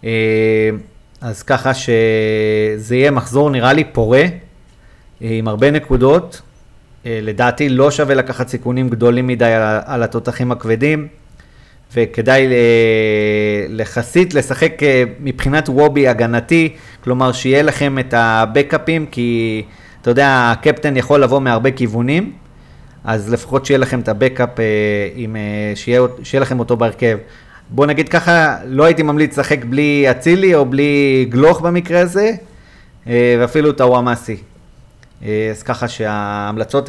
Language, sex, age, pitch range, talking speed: Hebrew, male, 30-49, 115-145 Hz, 110 wpm